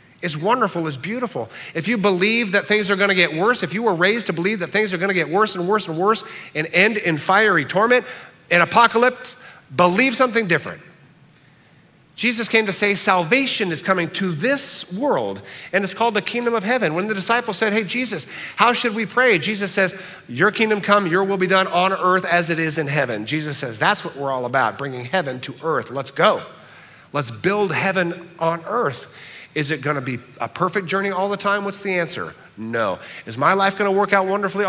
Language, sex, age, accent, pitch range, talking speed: English, male, 50-69, American, 150-200 Hz, 215 wpm